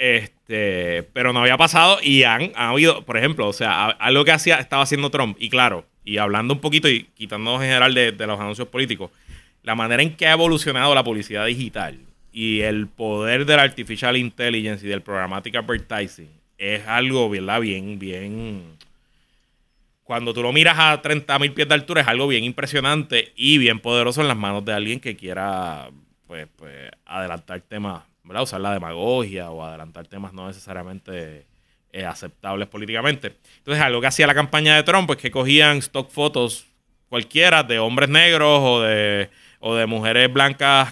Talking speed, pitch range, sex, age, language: 175 wpm, 105-145 Hz, male, 30-49, Spanish